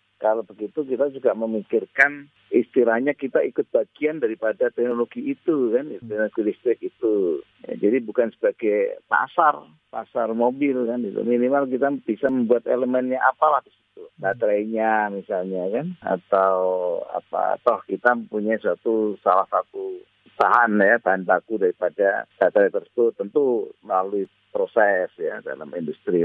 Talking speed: 130 wpm